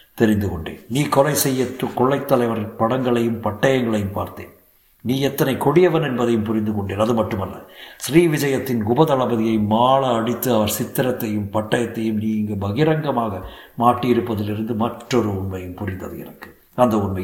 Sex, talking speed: male, 120 wpm